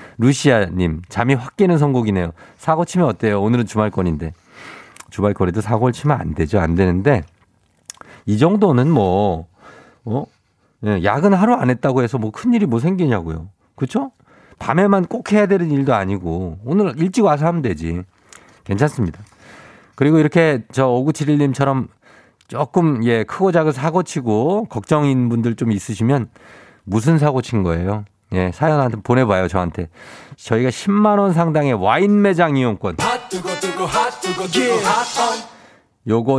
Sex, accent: male, native